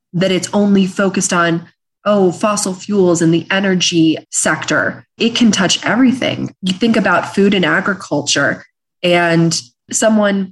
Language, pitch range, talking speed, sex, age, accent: English, 170-200 Hz, 135 wpm, female, 30-49, American